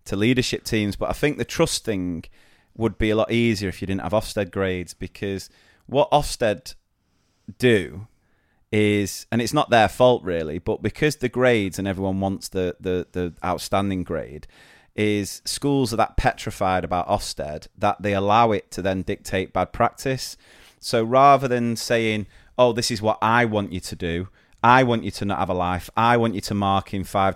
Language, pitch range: English, 95-115 Hz